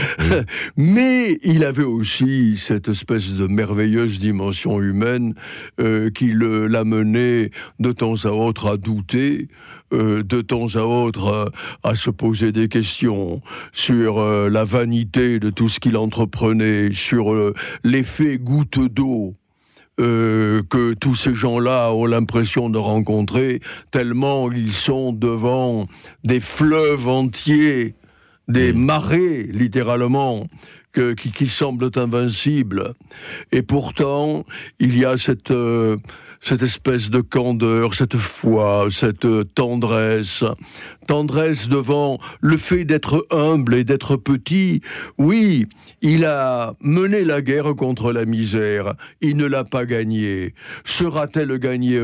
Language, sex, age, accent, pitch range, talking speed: French, male, 60-79, French, 110-140 Hz, 125 wpm